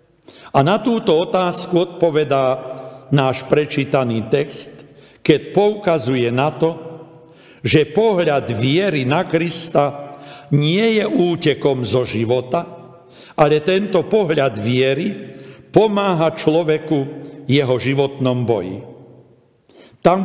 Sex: male